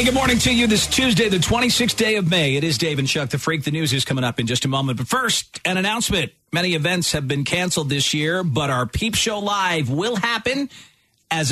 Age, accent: 40-59, American